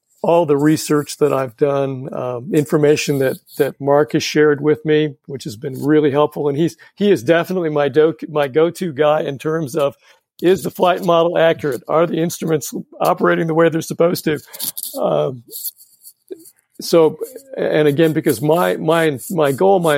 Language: English